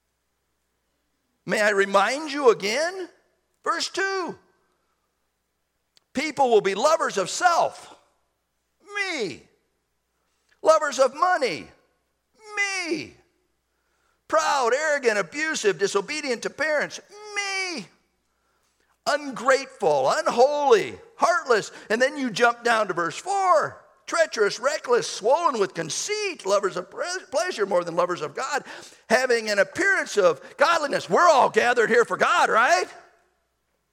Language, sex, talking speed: English, male, 110 wpm